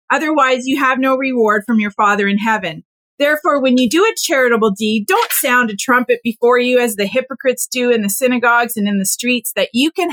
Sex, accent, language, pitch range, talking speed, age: female, American, English, 220-280 Hz, 220 wpm, 30-49